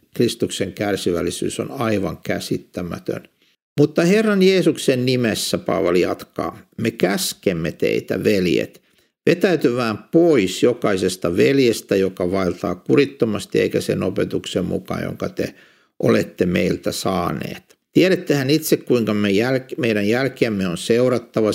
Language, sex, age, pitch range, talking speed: Finnish, male, 60-79, 100-135 Hz, 105 wpm